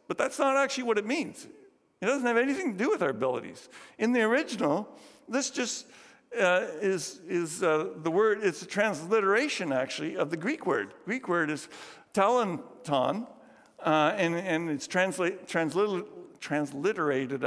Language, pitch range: English, 155-220 Hz